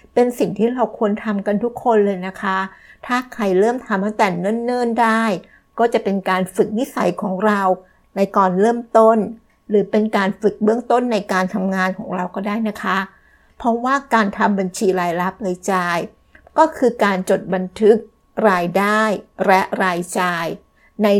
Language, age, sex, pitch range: Thai, 60-79, female, 190-225 Hz